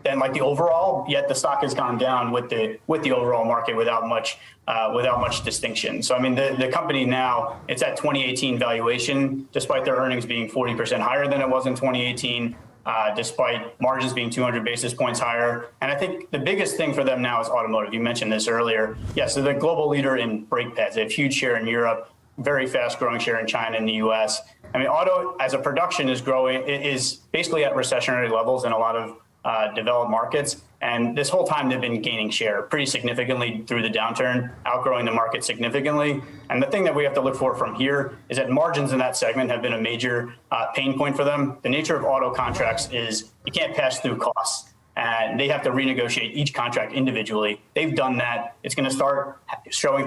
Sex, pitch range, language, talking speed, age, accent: male, 115-135 Hz, English, 220 wpm, 30-49, American